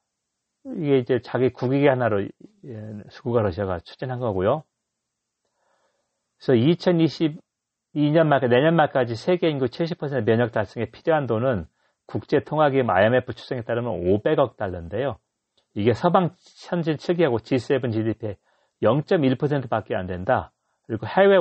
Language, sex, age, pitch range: Korean, male, 40-59, 100-135 Hz